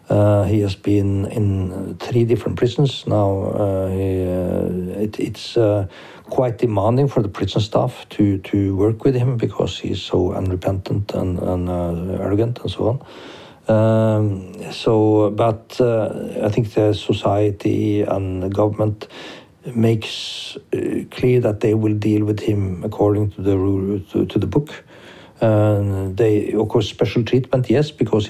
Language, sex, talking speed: Czech, male, 155 wpm